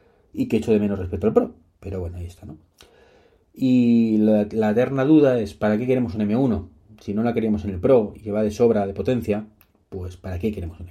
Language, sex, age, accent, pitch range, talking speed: Spanish, male, 30-49, Spanish, 90-110 Hz, 235 wpm